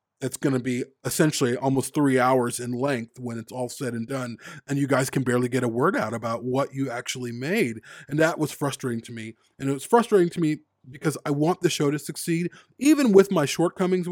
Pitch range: 130-160 Hz